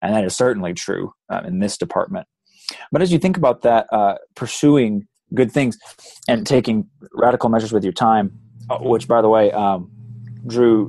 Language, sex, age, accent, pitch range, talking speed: English, male, 20-39, American, 100-125 Hz, 175 wpm